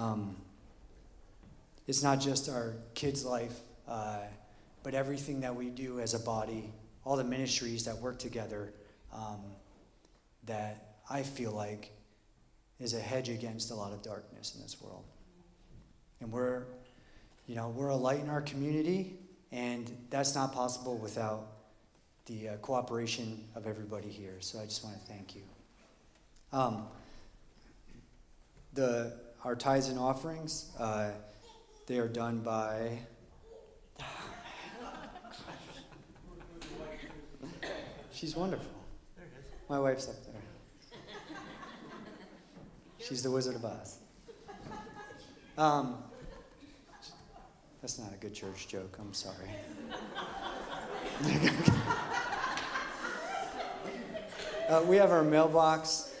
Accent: American